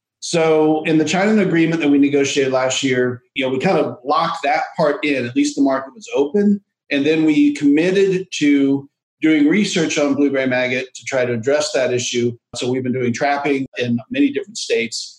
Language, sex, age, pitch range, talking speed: English, male, 50-69, 125-170 Hz, 200 wpm